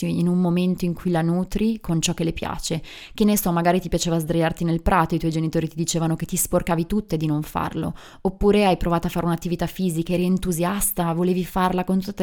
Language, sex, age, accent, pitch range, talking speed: Italian, female, 20-39, native, 165-185 Hz, 225 wpm